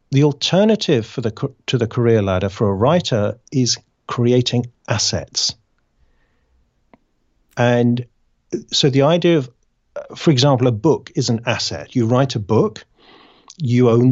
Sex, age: male, 40-59